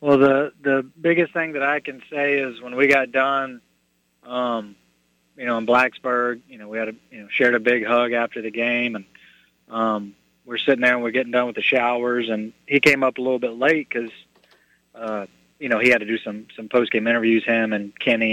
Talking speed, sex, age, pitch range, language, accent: 225 wpm, male, 30-49, 115-140 Hz, English, American